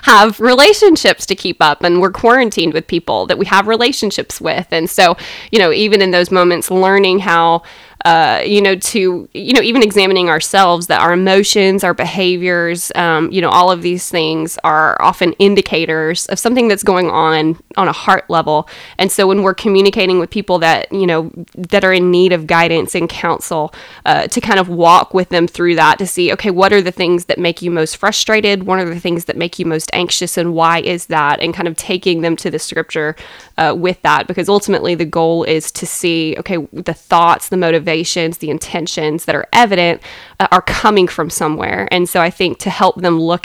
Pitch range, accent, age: 165-190 Hz, American, 20-39